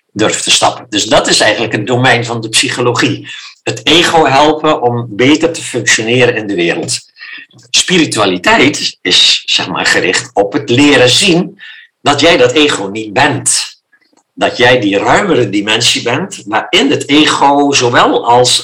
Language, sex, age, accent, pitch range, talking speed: Dutch, male, 60-79, Dutch, 110-145 Hz, 155 wpm